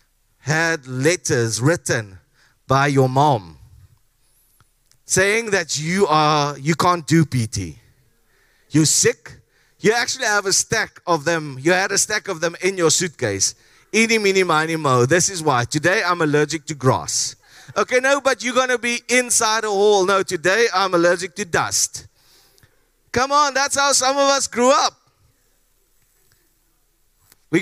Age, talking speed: 30-49, 150 wpm